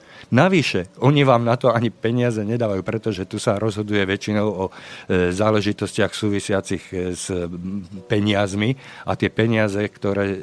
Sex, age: male, 50-69